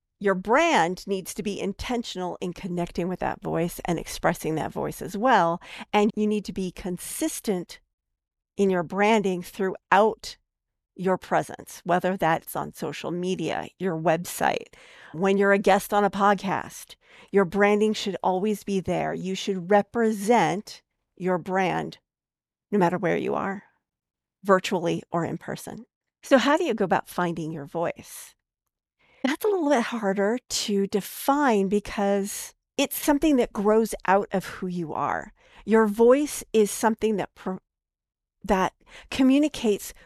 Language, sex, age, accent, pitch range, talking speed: English, female, 50-69, American, 185-230 Hz, 145 wpm